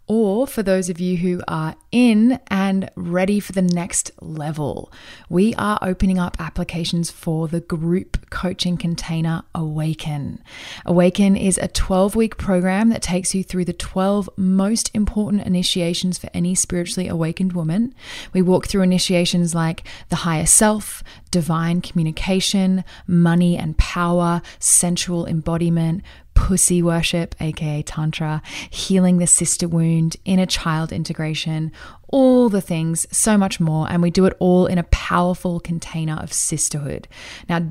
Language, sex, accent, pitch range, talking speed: English, female, Australian, 165-190 Hz, 140 wpm